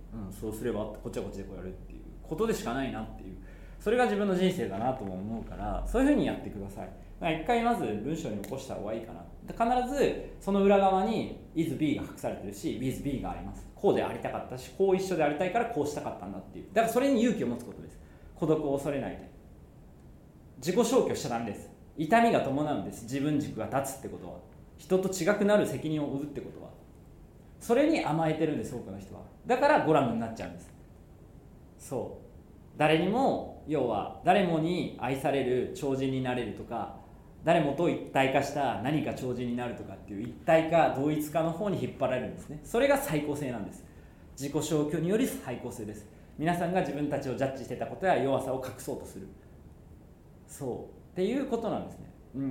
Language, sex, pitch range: Japanese, male, 120-185 Hz